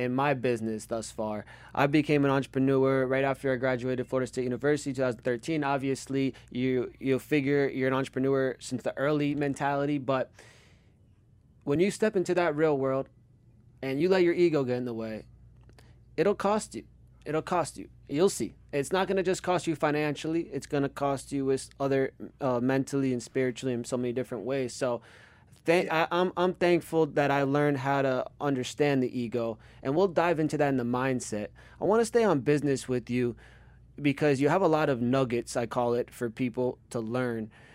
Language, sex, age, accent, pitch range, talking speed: English, male, 20-39, American, 125-150 Hz, 190 wpm